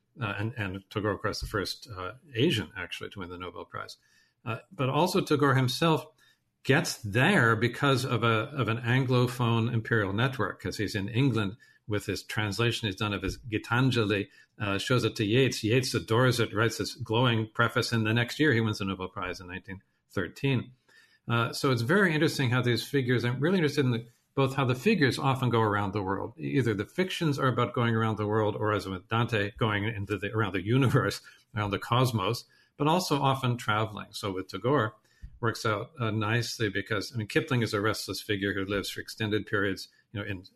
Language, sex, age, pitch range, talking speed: English, male, 50-69, 105-130 Hz, 200 wpm